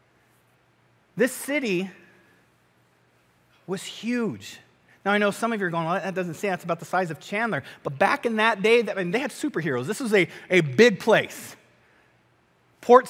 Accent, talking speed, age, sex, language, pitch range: American, 170 wpm, 30-49, male, English, 165-240 Hz